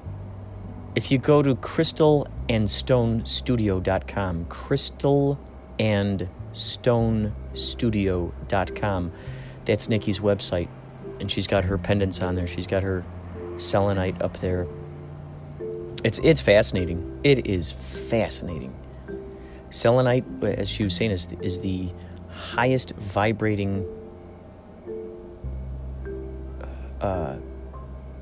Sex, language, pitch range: male, English, 80-110 Hz